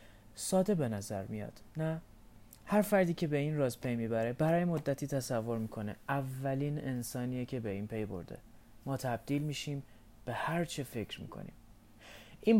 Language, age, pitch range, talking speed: Persian, 30-49, 110-160 Hz, 155 wpm